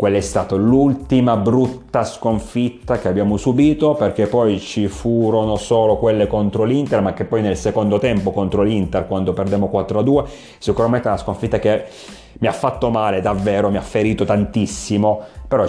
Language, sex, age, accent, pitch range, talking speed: Italian, male, 30-49, native, 100-115 Hz, 165 wpm